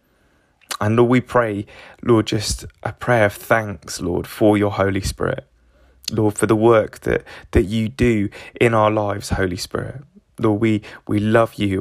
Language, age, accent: English, 20-39, British